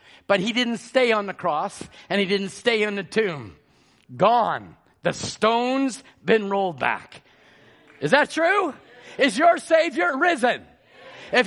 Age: 50-69